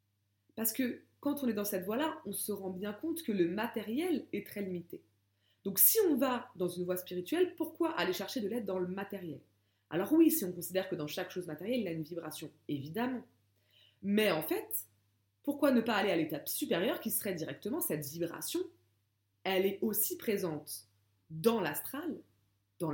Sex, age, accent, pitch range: female, 20-39, French, 155-235 Hz